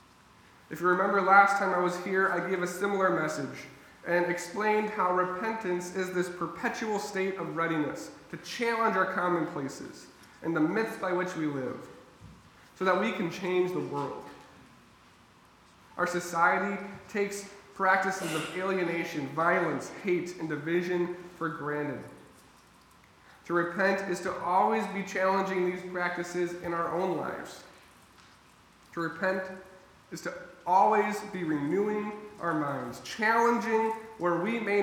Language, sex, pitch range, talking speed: English, male, 165-190 Hz, 135 wpm